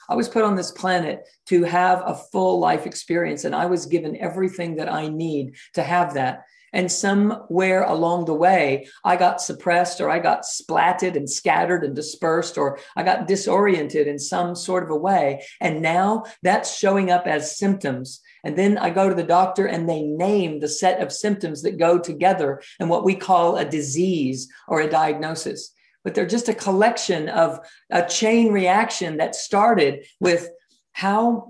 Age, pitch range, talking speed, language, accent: 50-69, 165-195 Hz, 180 wpm, English, American